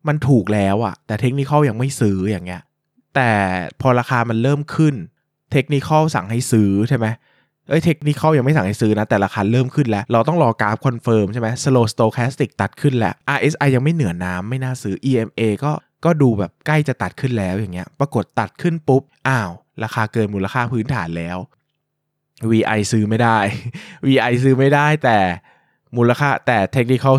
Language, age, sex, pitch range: Thai, 20-39, male, 105-145 Hz